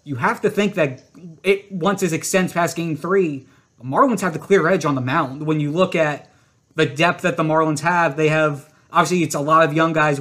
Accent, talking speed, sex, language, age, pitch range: American, 235 wpm, male, English, 30-49, 155-185 Hz